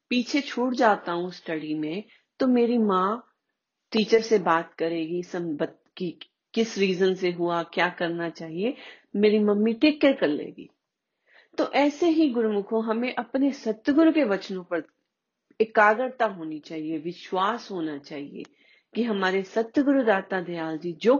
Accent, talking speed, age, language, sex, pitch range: native, 140 wpm, 40-59, Hindi, female, 190-260 Hz